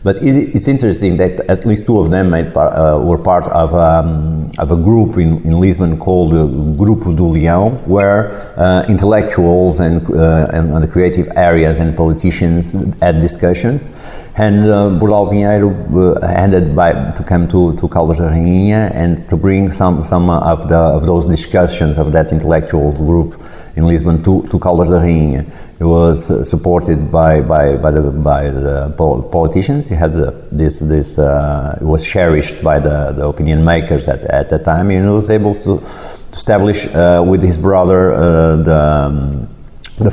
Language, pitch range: English, 80-95 Hz